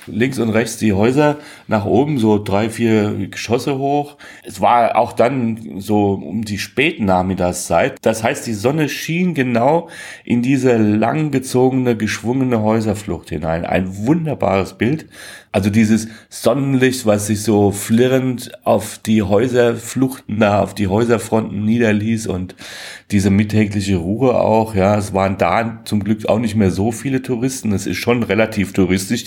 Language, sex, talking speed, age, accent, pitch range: German, male, 150 wpm, 40-59, German, 100-120 Hz